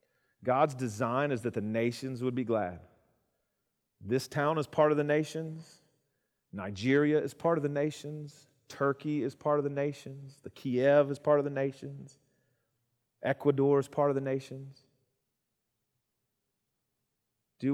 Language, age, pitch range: English, 40-59, 105-140 Hz